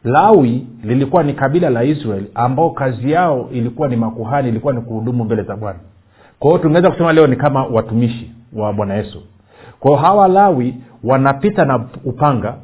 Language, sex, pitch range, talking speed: Swahili, male, 115-155 Hz, 165 wpm